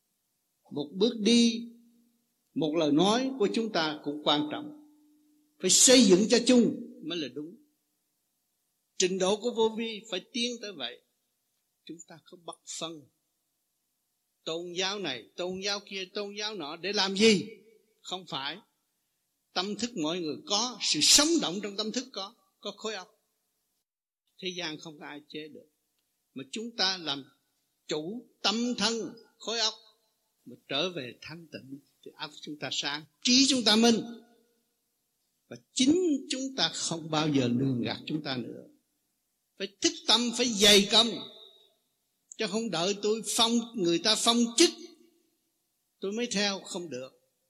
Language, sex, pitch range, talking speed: Vietnamese, male, 165-240 Hz, 160 wpm